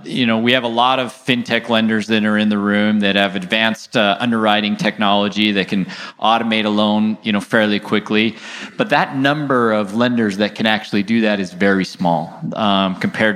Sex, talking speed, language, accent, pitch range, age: male, 200 wpm, English, American, 105-120 Hz, 30-49